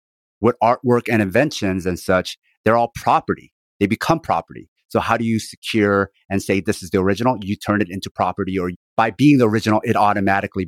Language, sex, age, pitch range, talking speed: English, male, 30-49, 95-115 Hz, 195 wpm